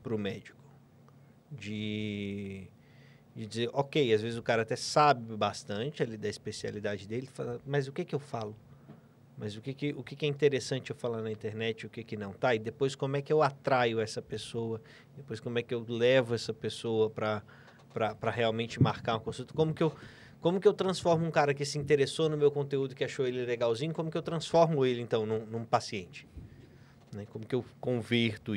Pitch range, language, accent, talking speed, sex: 115-145 Hz, Portuguese, Brazilian, 205 wpm, male